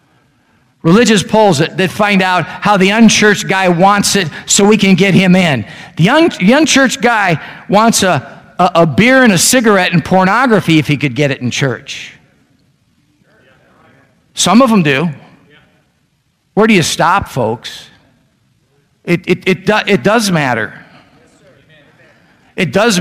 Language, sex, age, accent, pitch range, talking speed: English, male, 50-69, American, 175-220 Hz, 150 wpm